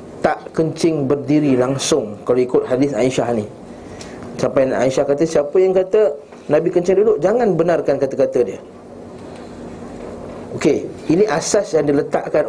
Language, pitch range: Malay, 130-165 Hz